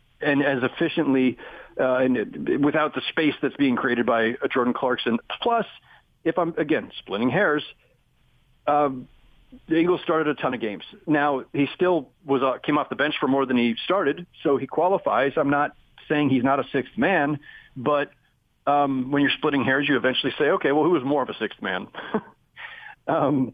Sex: male